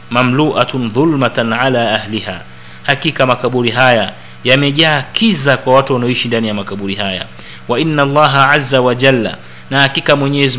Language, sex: Swahili, male